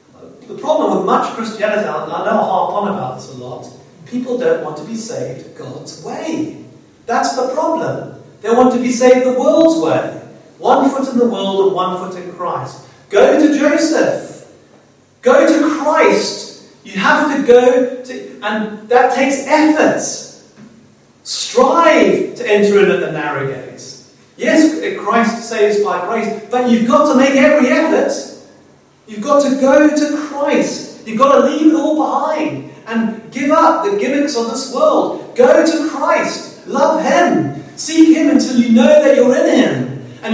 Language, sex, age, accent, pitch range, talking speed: English, male, 40-59, British, 225-300 Hz, 170 wpm